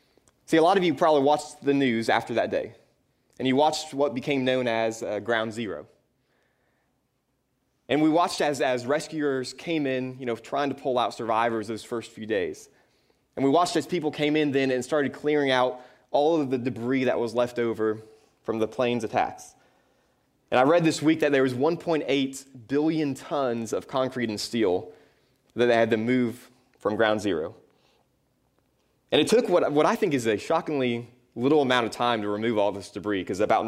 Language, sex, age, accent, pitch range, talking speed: English, male, 20-39, American, 115-145 Hz, 195 wpm